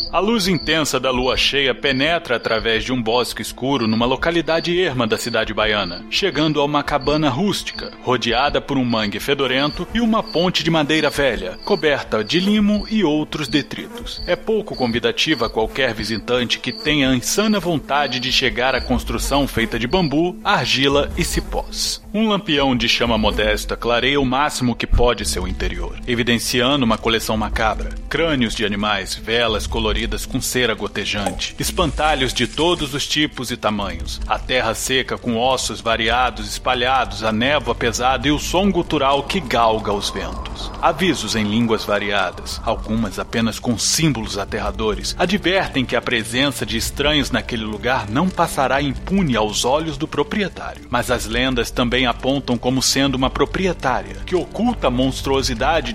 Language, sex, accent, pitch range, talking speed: Portuguese, male, Brazilian, 115-150 Hz, 160 wpm